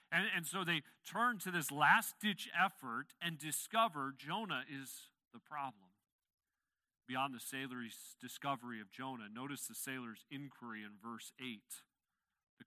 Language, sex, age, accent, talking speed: English, male, 40-59, American, 135 wpm